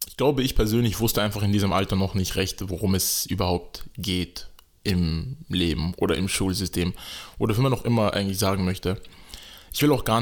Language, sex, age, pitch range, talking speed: German, male, 20-39, 95-110 Hz, 195 wpm